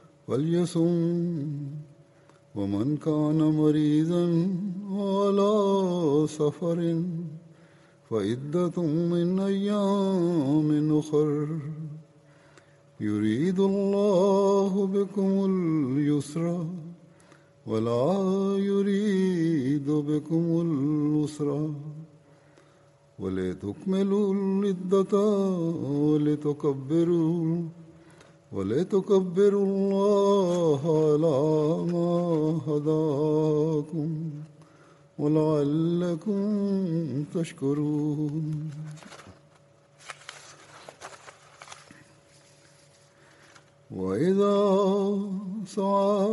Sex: male